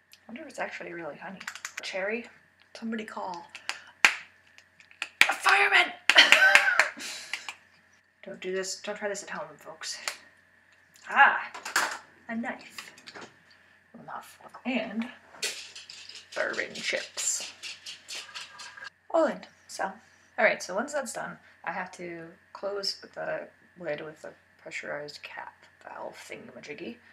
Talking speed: 105 wpm